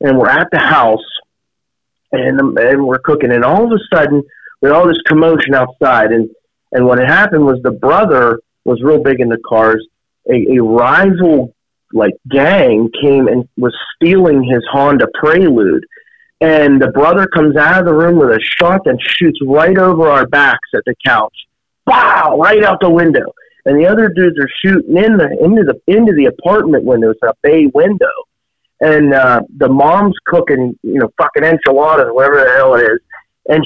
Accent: American